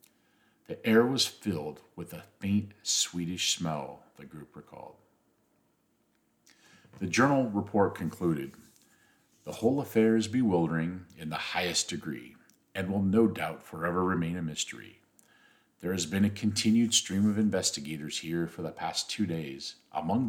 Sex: male